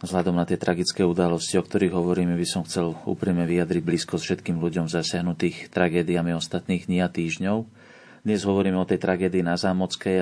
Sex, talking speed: male, 175 wpm